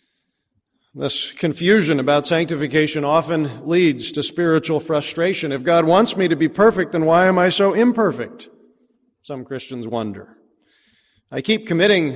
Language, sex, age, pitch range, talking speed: English, male, 40-59, 140-175 Hz, 140 wpm